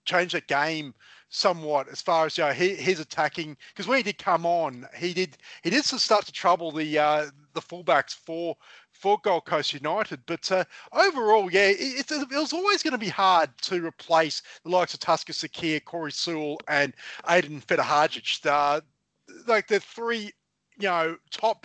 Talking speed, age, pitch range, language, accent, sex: 185 wpm, 30-49, 165-215 Hz, English, Australian, male